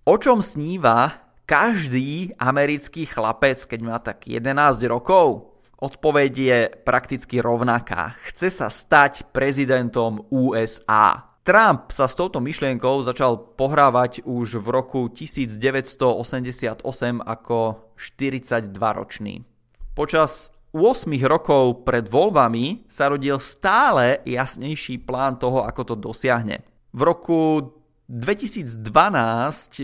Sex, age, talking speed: male, 20-39, 105 wpm